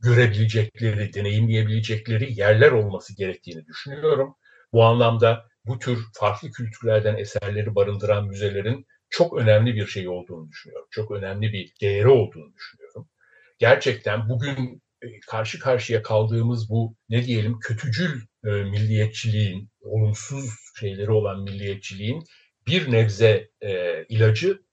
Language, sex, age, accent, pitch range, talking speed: Turkish, male, 60-79, native, 105-125 Hz, 105 wpm